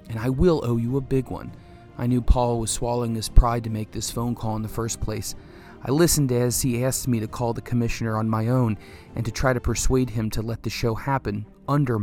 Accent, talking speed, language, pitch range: American, 245 wpm, English, 115-140 Hz